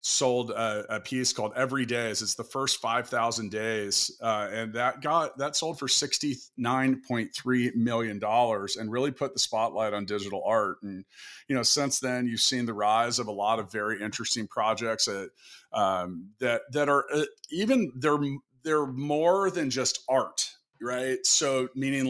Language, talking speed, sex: English, 180 wpm, male